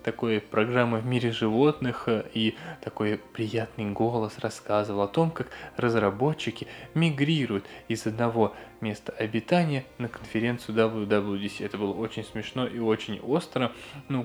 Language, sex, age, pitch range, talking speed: Russian, male, 20-39, 110-135 Hz, 125 wpm